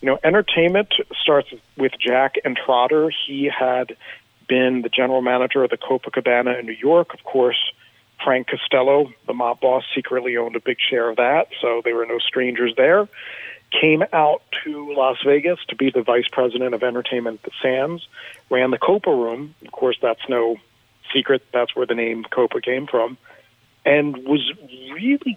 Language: English